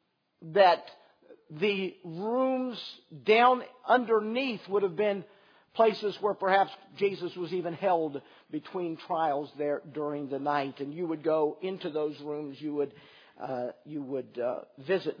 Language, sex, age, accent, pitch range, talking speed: English, male, 50-69, American, 150-200 Hz, 140 wpm